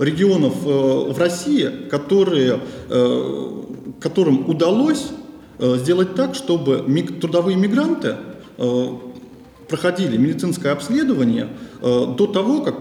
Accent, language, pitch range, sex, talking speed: native, Russian, 140-235 Hz, male, 80 wpm